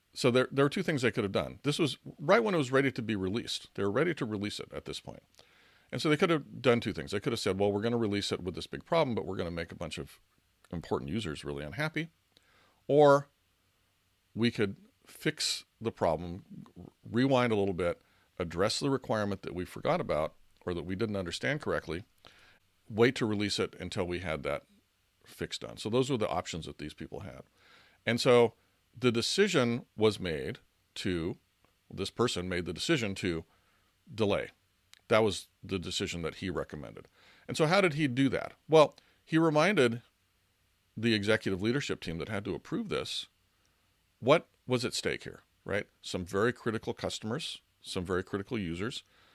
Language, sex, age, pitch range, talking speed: English, male, 50-69, 95-125 Hz, 195 wpm